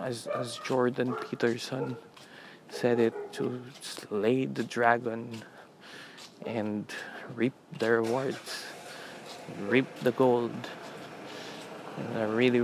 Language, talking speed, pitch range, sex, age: Filipino, 95 wpm, 115-125 Hz, male, 20-39